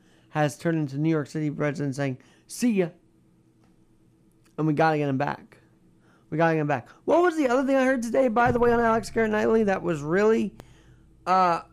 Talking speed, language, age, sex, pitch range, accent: 205 wpm, English, 40-59, male, 145-190 Hz, American